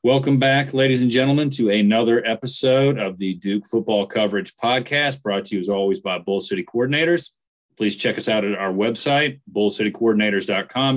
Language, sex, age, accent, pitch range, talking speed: English, male, 40-59, American, 105-130 Hz, 170 wpm